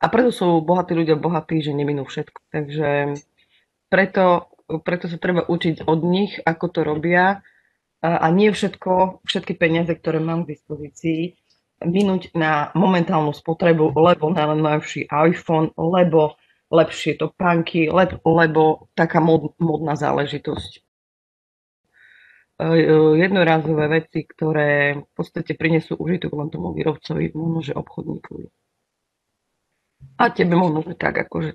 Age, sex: 30-49, female